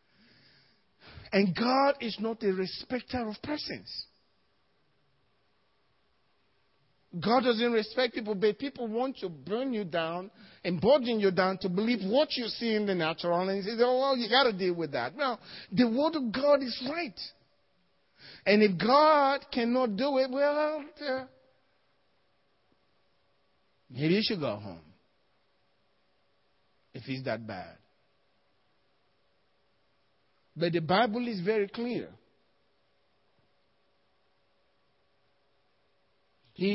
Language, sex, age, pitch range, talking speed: English, male, 50-69, 140-235 Hz, 115 wpm